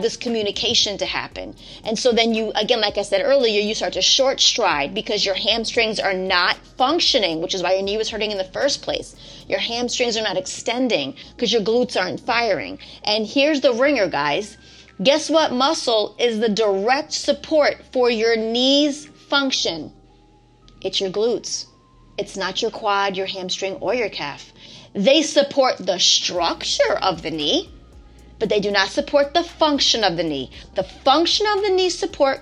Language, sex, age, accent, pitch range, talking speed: English, female, 30-49, American, 200-285 Hz, 180 wpm